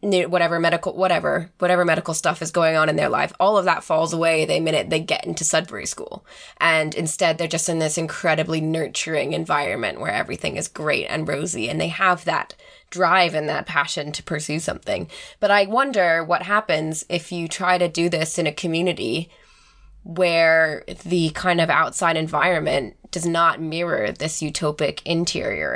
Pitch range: 160-180 Hz